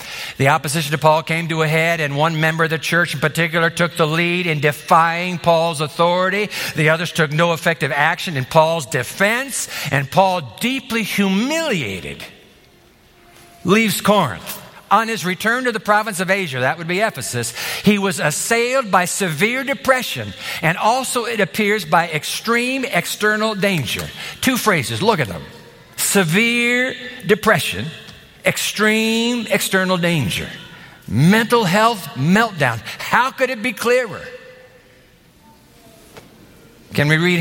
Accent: American